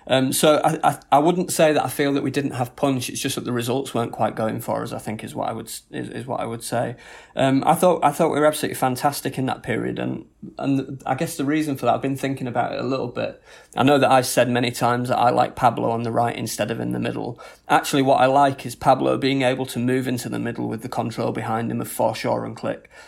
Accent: British